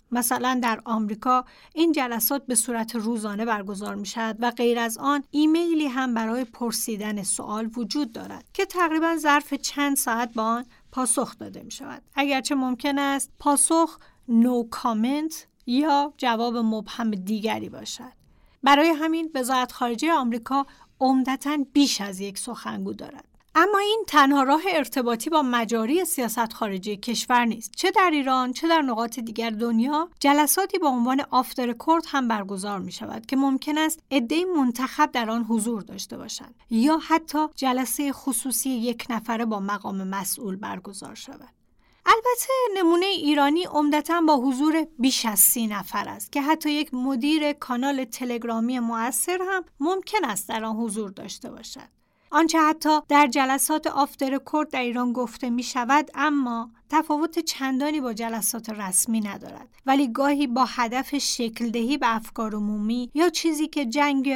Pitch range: 230-295 Hz